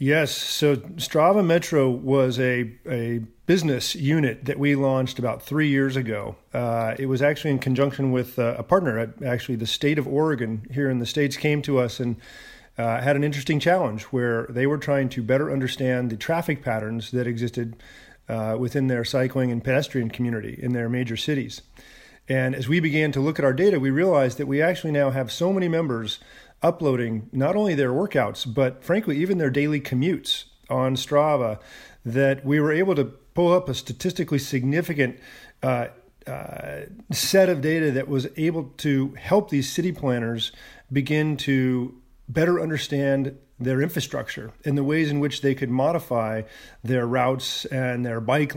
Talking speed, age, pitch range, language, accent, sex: 175 wpm, 40-59, 125-145 Hz, English, American, male